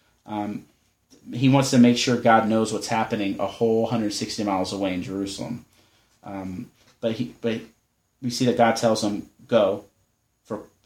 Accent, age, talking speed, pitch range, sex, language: American, 30-49, 160 wpm, 110-140 Hz, male, English